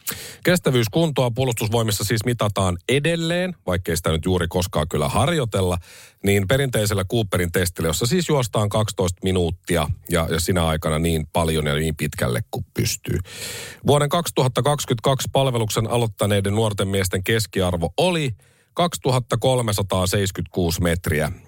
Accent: native